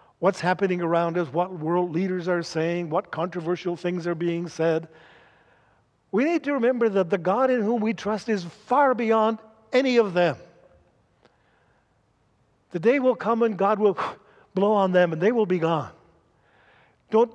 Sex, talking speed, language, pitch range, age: male, 165 wpm, English, 165-215 Hz, 60-79